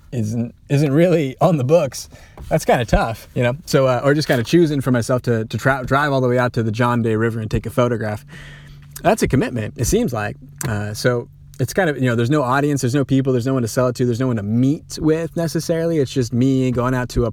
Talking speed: 265 wpm